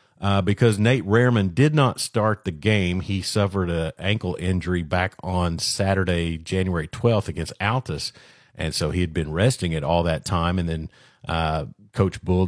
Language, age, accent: English, 50-69, American